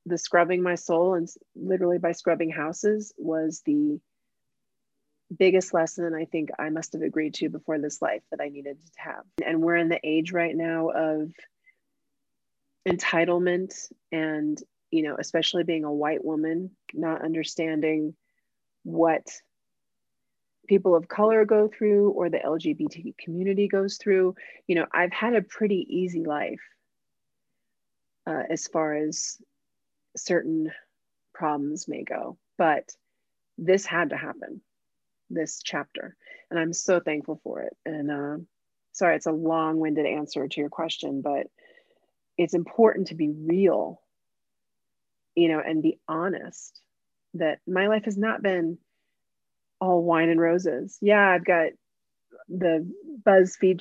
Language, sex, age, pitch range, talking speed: English, female, 30-49, 160-190 Hz, 140 wpm